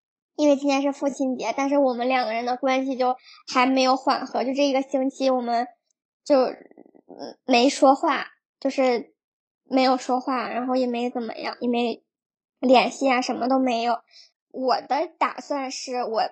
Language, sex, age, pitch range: Chinese, male, 10-29, 250-295 Hz